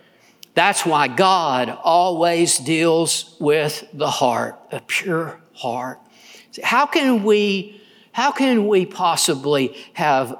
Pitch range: 150-215 Hz